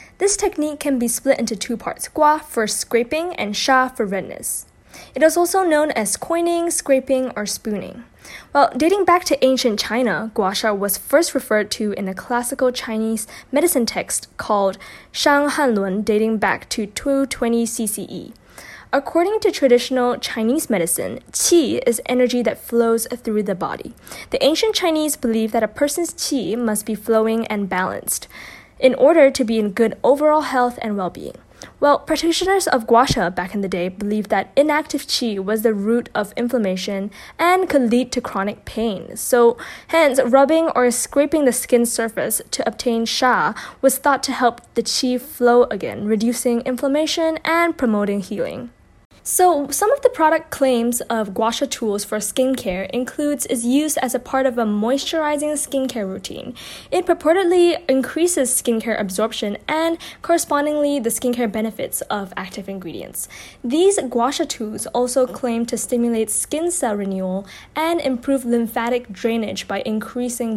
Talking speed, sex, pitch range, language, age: 160 wpm, female, 220-290 Hz, English, 10-29